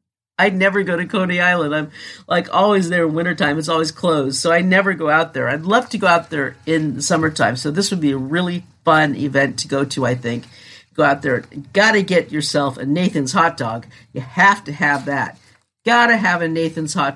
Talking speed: 225 wpm